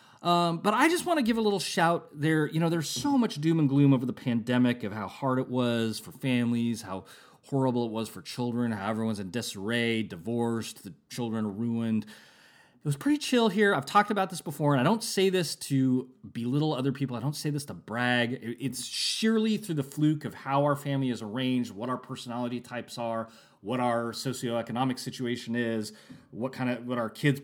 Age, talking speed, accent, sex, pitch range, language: 30-49, 210 wpm, American, male, 115-170 Hz, English